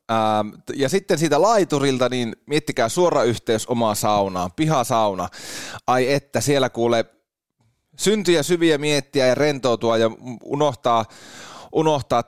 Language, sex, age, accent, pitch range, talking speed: Finnish, male, 30-49, native, 115-155 Hz, 110 wpm